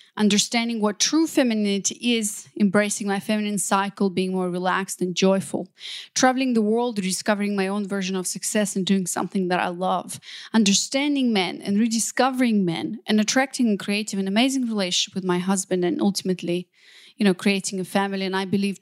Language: English